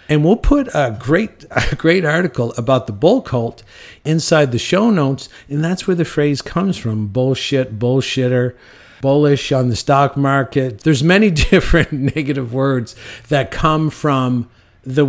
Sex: male